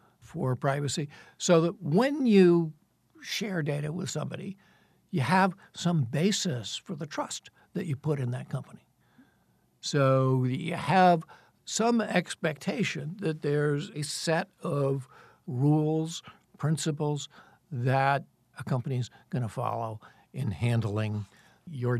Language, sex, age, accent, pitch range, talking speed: English, male, 60-79, American, 130-165 Hz, 120 wpm